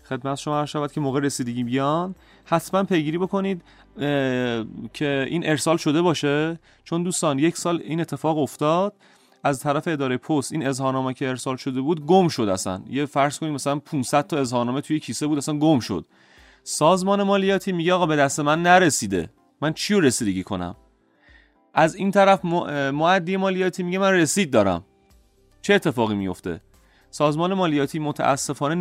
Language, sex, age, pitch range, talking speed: Persian, male, 30-49, 130-175 Hz, 160 wpm